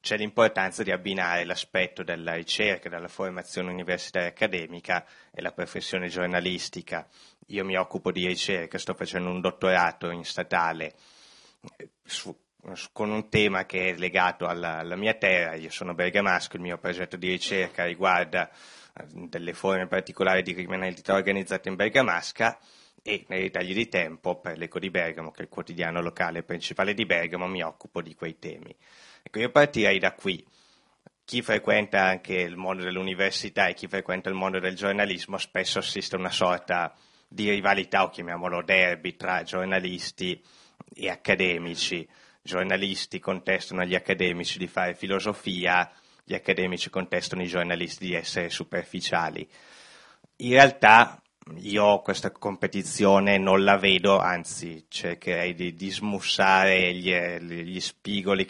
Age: 20-39